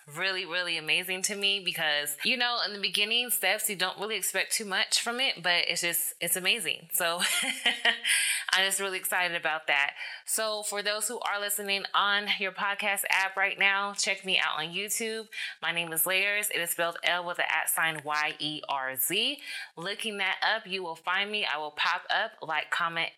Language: English